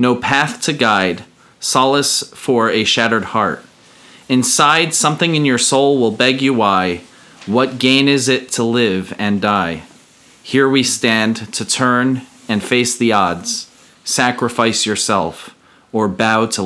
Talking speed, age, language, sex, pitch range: 145 wpm, 40-59, English, male, 100-130 Hz